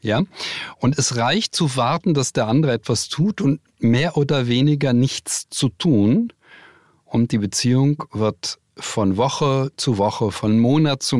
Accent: German